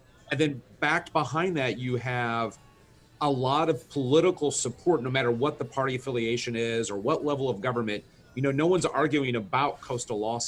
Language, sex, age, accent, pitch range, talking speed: English, male, 40-59, American, 125-150 Hz, 185 wpm